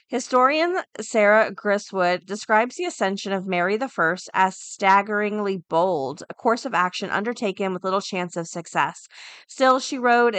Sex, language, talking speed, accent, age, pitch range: female, English, 145 wpm, American, 30-49, 185-230 Hz